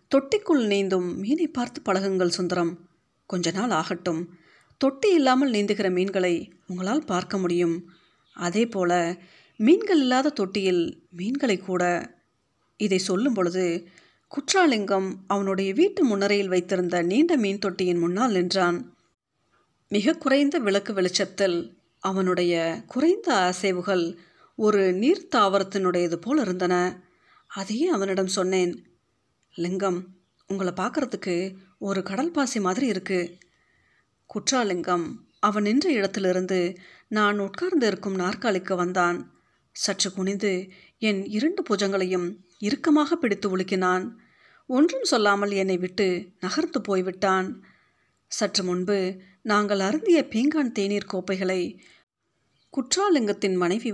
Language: Tamil